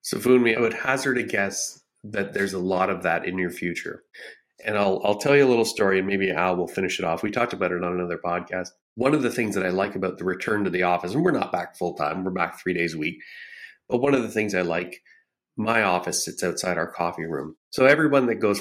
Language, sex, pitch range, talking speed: English, male, 90-110 Hz, 260 wpm